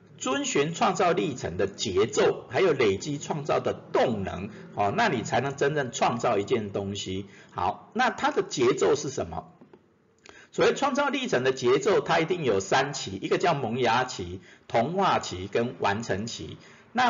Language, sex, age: Chinese, male, 50-69